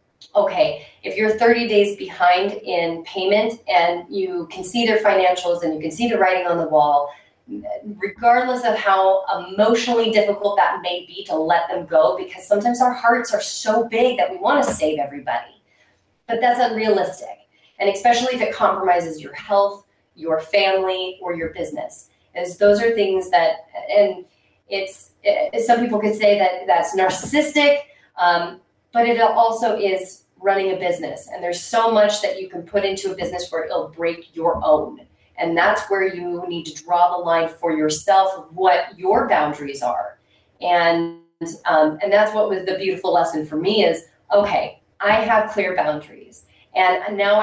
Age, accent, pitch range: 30-49, American, 170-215 Hz